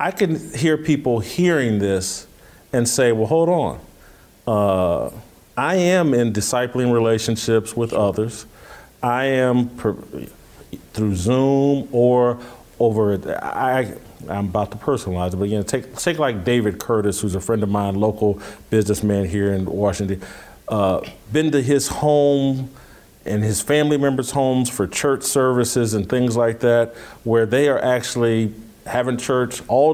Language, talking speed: English, 150 wpm